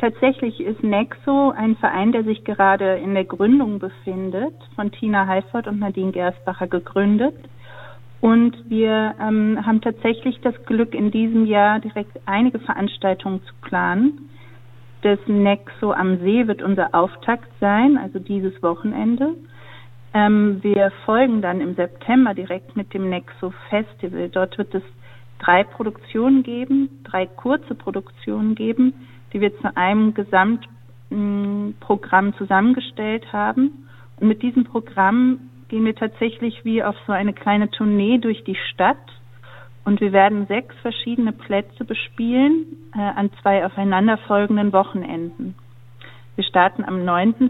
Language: German